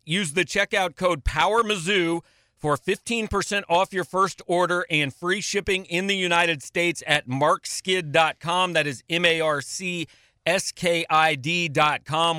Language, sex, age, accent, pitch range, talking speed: English, male, 40-59, American, 150-175 Hz, 110 wpm